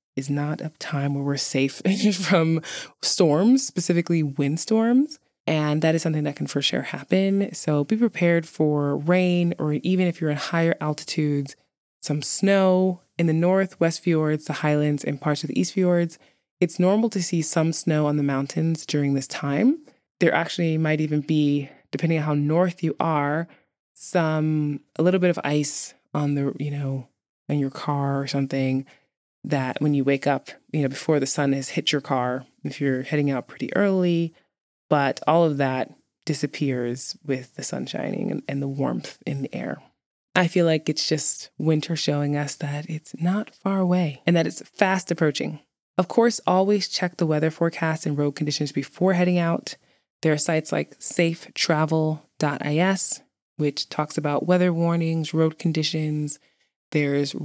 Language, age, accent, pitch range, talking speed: English, 20-39, American, 145-175 Hz, 175 wpm